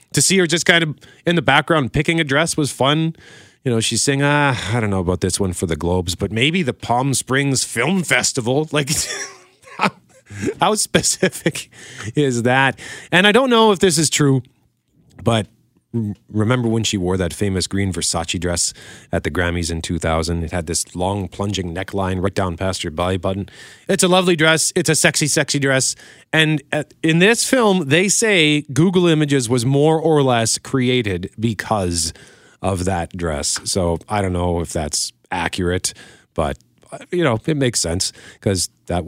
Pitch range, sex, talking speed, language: 100-155 Hz, male, 180 wpm, English